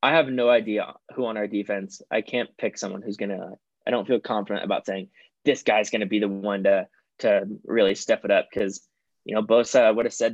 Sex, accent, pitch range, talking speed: male, American, 105-125 Hz, 225 wpm